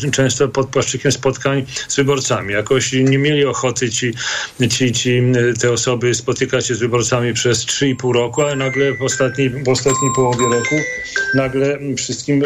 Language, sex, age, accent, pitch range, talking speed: Polish, male, 40-59, native, 120-140 Hz, 155 wpm